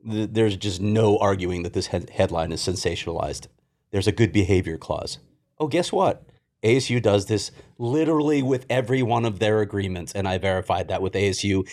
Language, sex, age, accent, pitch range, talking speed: English, male, 30-49, American, 100-130 Hz, 170 wpm